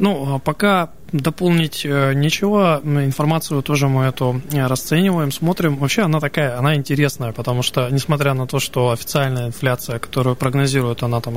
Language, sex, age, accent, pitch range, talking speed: Russian, male, 20-39, native, 120-145 Hz, 145 wpm